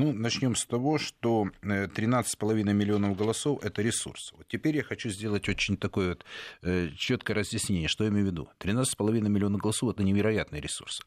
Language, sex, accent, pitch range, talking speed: Russian, male, native, 90-115 Hz, 170 wpm